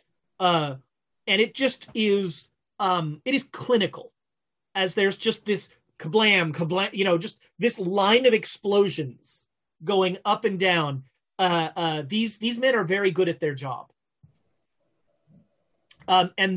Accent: American